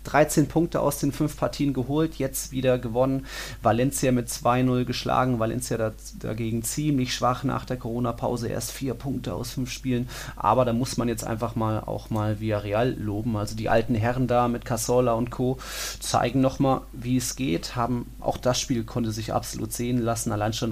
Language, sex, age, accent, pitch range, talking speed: German, male, 30-49, German, 115-135 Hz, 190 wpm